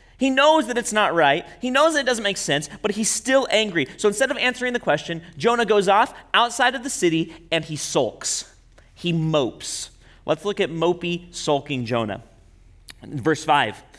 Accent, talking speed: American, 185 wpm